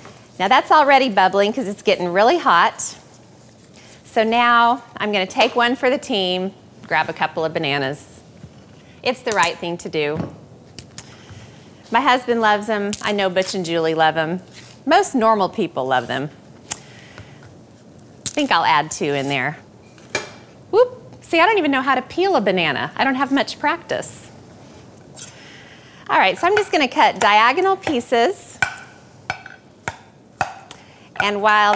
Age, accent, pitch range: 30-49, American, 185-260 Hz